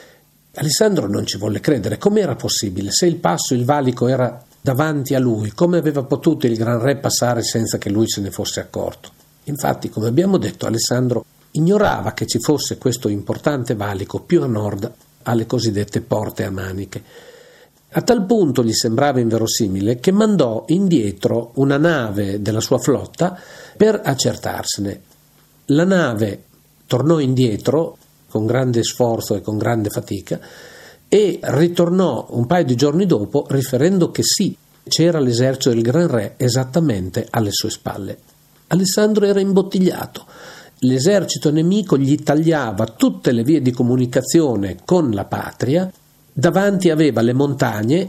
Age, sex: 50-69, male